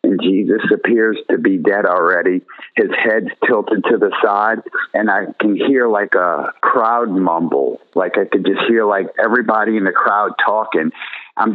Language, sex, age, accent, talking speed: English, male, 50-69, American, 170 wpm